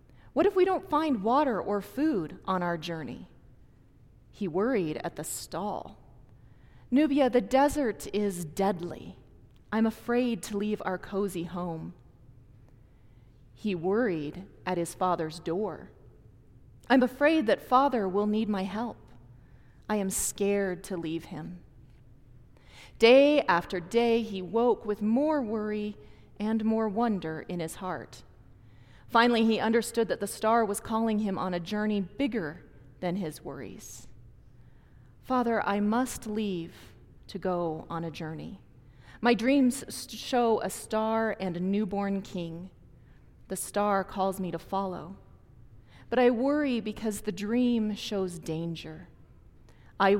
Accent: American